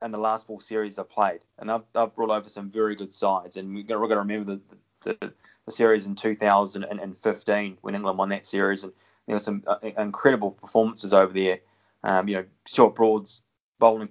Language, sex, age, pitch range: English, male, 20-39, 100-110 Hz